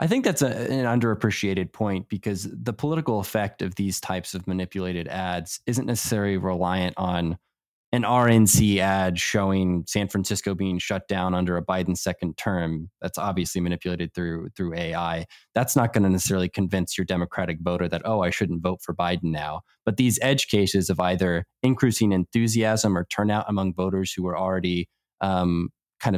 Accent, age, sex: American, 20-39, male